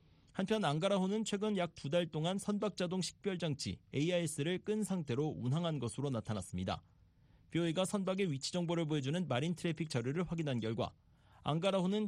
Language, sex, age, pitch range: Korean, male, 40-59, 125-180 Hz